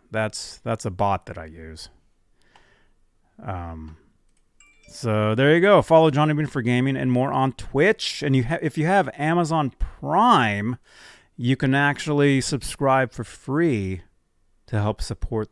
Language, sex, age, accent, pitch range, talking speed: English, male, 30-49, American, 85-130 Hz, 145 wpm